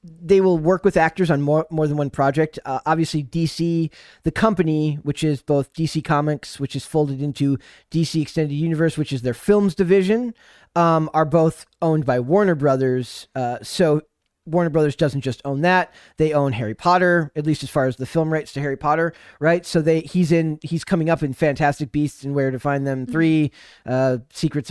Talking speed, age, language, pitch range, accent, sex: 200 wpm, 20-39, English, 145-175 Hz, American, male